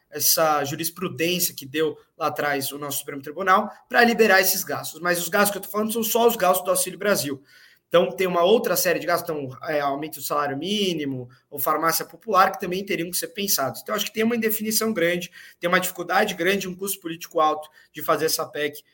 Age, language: 20-39, Portuguese